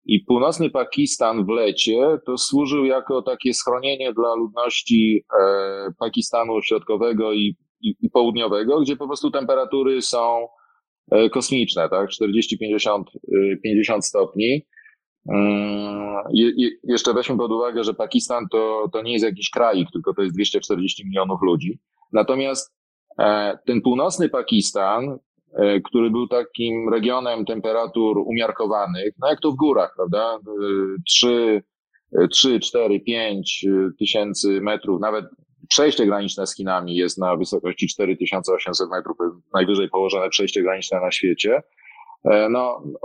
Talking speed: 120 wpm